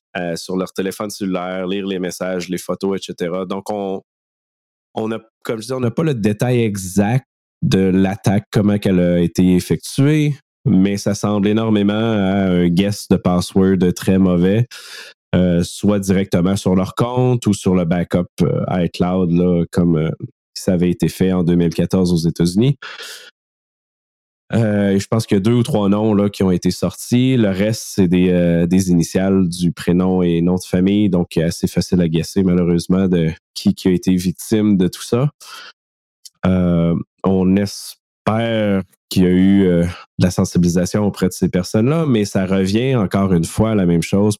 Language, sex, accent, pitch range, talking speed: French, male, Canadian, 90-105 Hz, 180 wpm